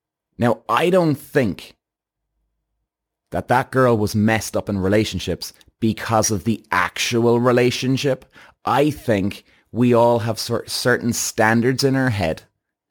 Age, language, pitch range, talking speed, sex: 30-49, English, 95-120 Hz, 125 wpm, male